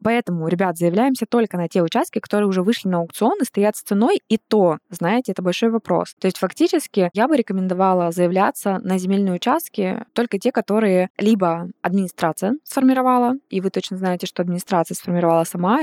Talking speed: 175 wpm